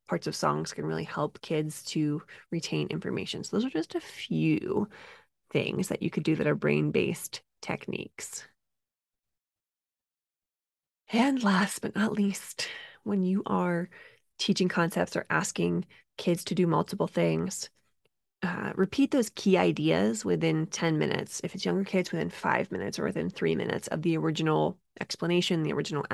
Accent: American